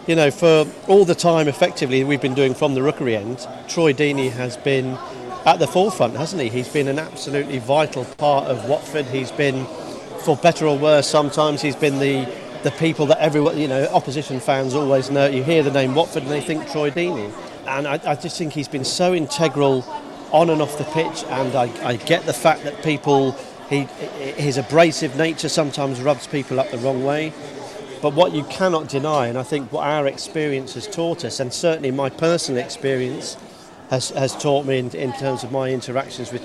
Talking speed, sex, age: 205 wpm, male, 40-59